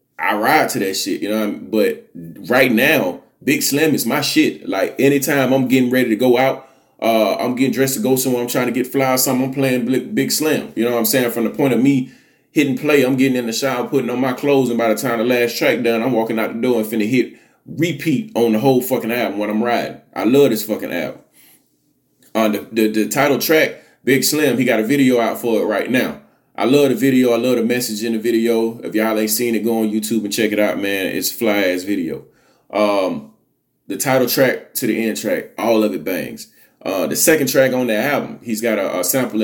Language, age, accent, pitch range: English, 20-39, American, 110-130 Hz